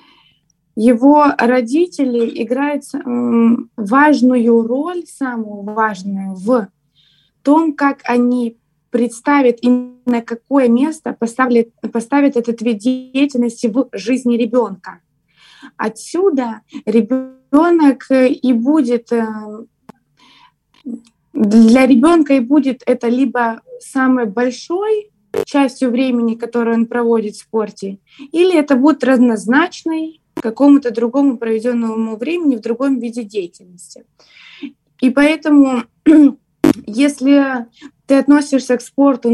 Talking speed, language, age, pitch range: 95 wpm, Russian, 20-39, 225-275 Hz